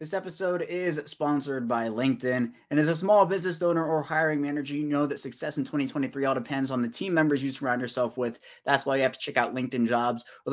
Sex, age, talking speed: male, 20-39, 235 wpm